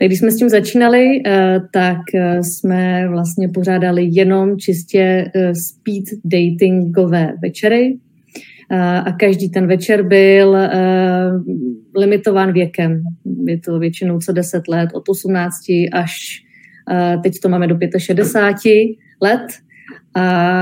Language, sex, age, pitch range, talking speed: Czech, female, 30-49, 180-200 Hz, 110 wpm